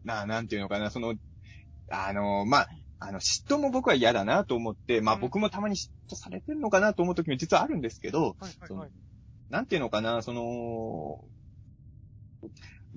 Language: Japanese